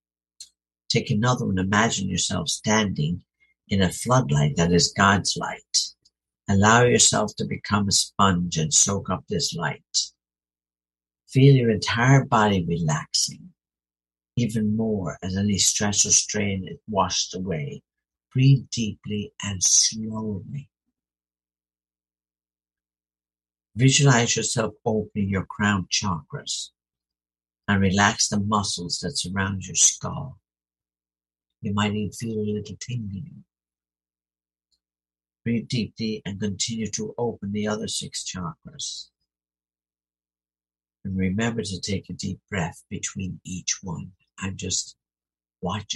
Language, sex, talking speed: English, male, 115 wpm